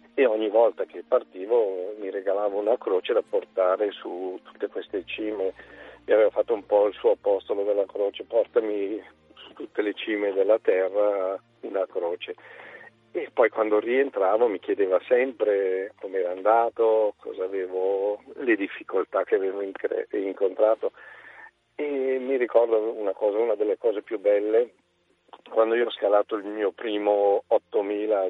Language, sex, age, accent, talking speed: Italian, male, 50-69, native, 150 wpm